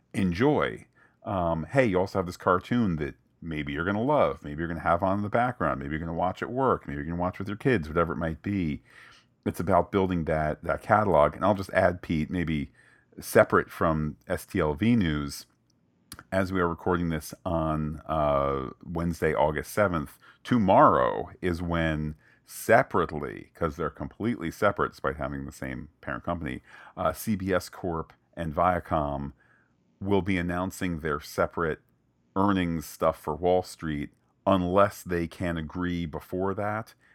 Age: 40-59